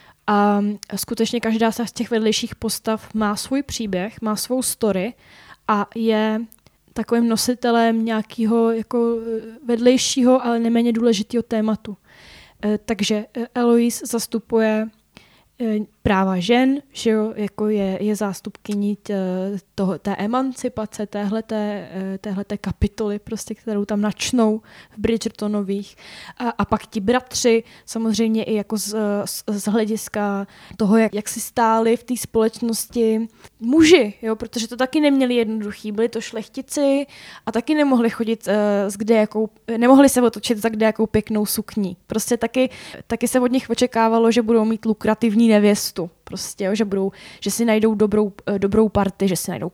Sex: female